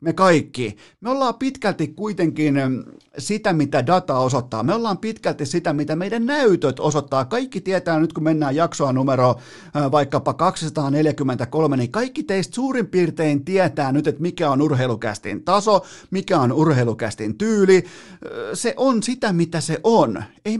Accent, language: native, Finnish